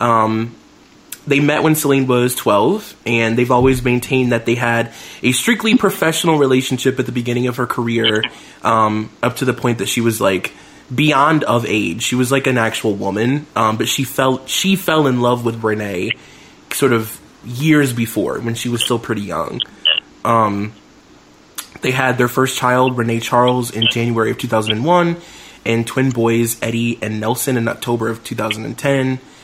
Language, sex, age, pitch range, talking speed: English, male, 20-39, 115-135 Hz, 170 wpm